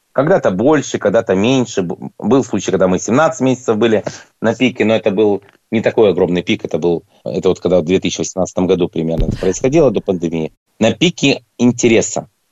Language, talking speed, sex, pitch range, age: Russian, 170 wpm, male, 100-130 Hz, 30-49